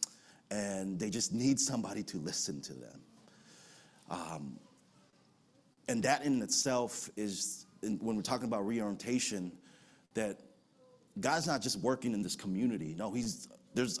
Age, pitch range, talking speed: 30-49, 95-125 Hz, 135 wpm